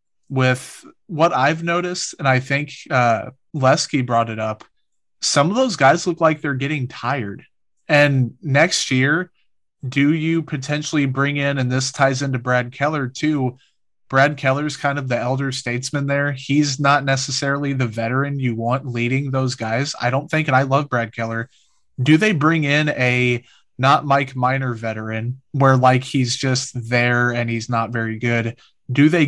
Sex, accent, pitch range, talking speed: male, American, 120-140 Hz, 170 wpm